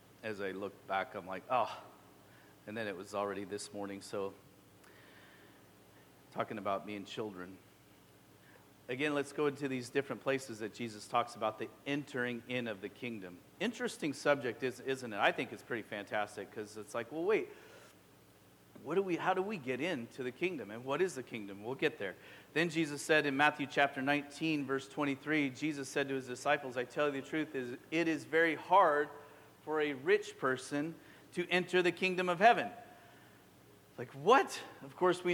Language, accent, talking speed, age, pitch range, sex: English, American, 185 wpm, 40-59, 130-165 Hz, male